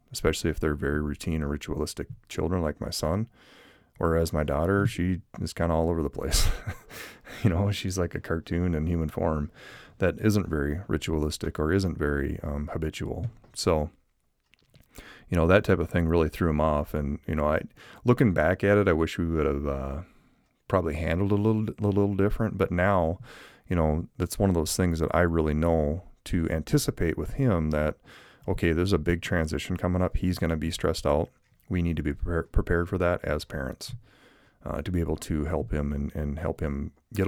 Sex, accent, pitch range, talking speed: male, American, 80-100 Hz, 200 wpm